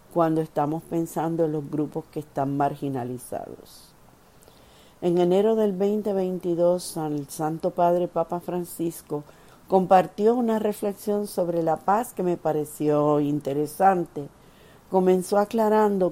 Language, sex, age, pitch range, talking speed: Spanish, female, 50-69, 150-185 Hz, 110 wpm